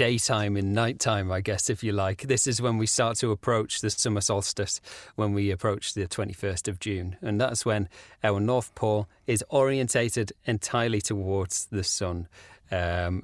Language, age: English, 30-49